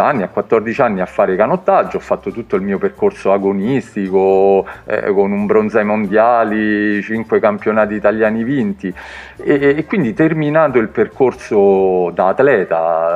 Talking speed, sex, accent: 140 wpm, male, native